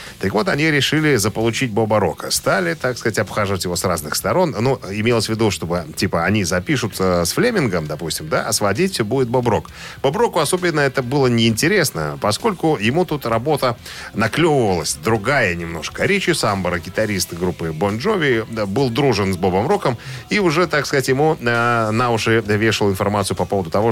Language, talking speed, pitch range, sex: Russian, 175 wpm, 100-140 Hz, male